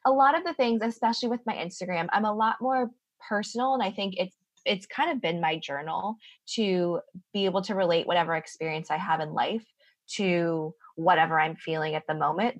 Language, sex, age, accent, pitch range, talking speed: English, female, 20-39, American, 170-225 Hz, 200 wpm